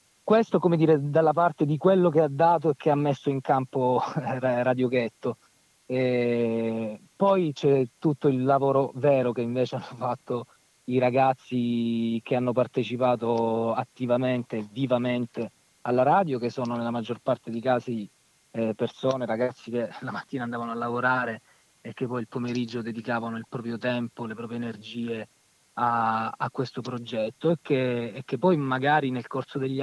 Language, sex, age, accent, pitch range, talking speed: Italian, male, 30-49, native, 120-135 Hz, 155 wpm